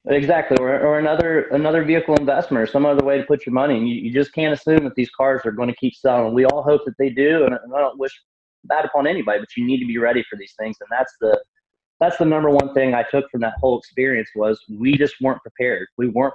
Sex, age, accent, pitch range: male, 30-49, American, 120-145 Hz